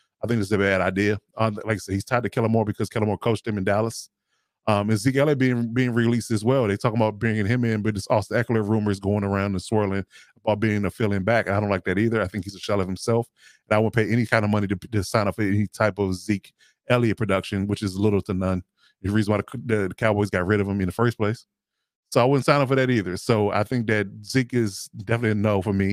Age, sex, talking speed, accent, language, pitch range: 20-39, male, 275 wpm, American, English, 100-115 Hz